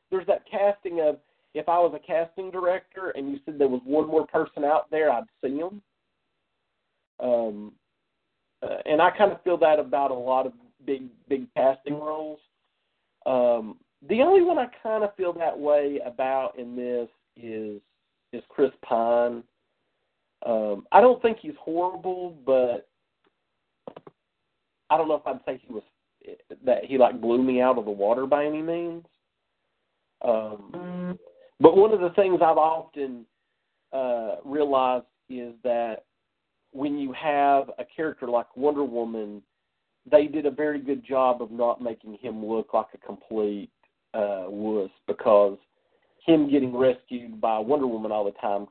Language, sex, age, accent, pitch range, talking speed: English, male, 40-59, American, 115-160 Hz, 160 wpm